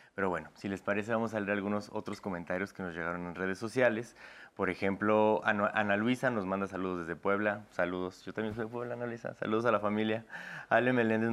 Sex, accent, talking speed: male, Mexican, 210 wpm